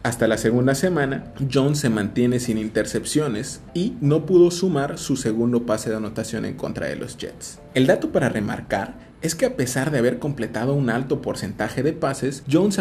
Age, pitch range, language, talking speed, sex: 30-49, 115-150 Hz, Spanish, 185 wpm, male